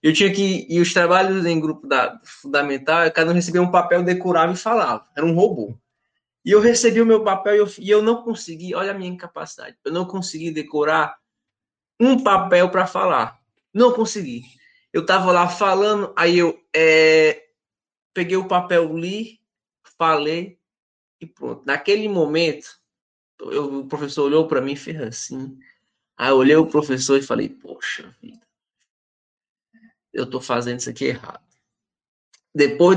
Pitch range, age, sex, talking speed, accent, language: 150-210 Hz, 20-39, male, 155 wpm, Brazilian, Portuguese